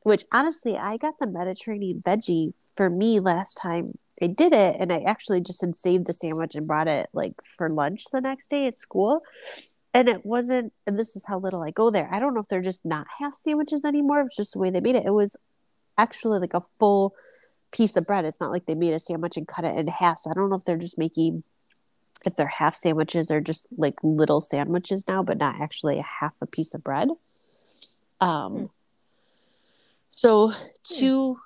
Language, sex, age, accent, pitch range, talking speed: English, female, 30-49, American, 170-215 Hz, 215 wpm